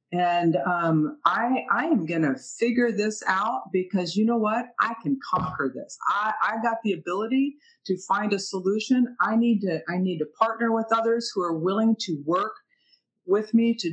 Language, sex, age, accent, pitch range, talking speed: English, female, 50-69, American, 180-245 Hz, 190 wpm